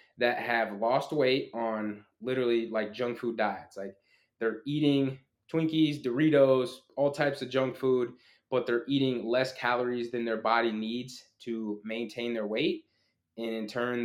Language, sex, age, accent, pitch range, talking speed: English, male, 20-39, American, 110-125 Hz, 155 wpm